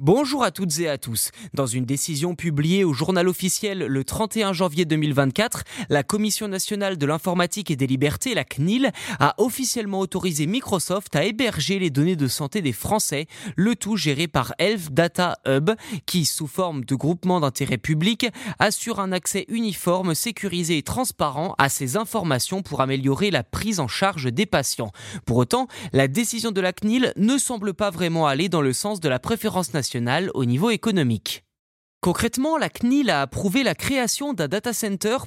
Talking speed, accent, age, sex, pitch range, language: 175 wpm, French, 20-39, male, 145-215 Hz, French